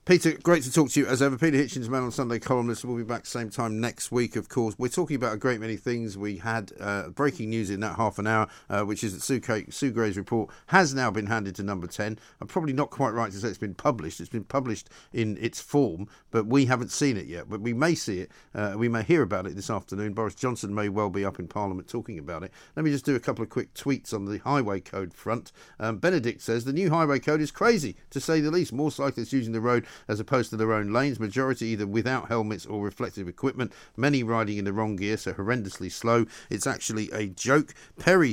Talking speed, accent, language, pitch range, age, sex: 250 wpm, British, English, 105-135 Hz, 50-69, male